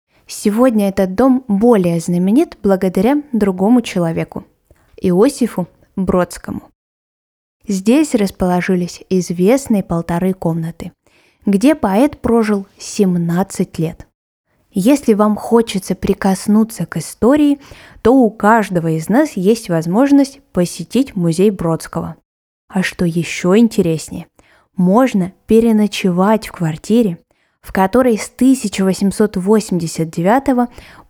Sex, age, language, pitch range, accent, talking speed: female, 20-39, Russian, 180-235 Hz, native, 95 wpm